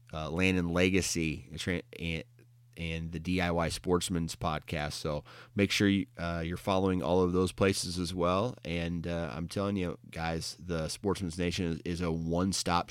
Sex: male